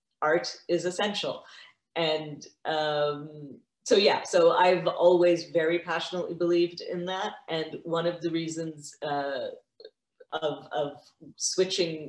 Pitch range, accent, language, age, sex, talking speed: 150-175 Hz, American, English, 40-59, female, 120 wpm